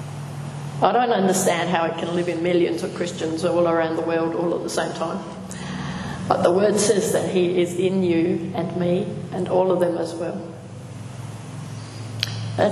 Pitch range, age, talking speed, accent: 165-195 Hz, 40-59, 180 wpm, Australian